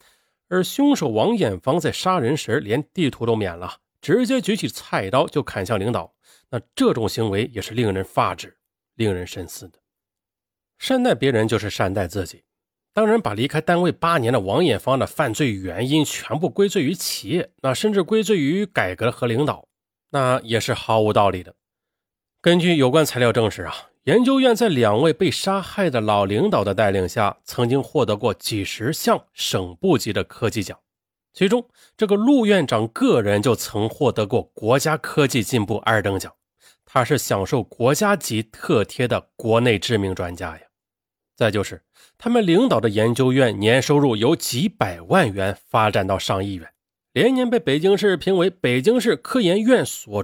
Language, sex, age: Chinese, male, 30-49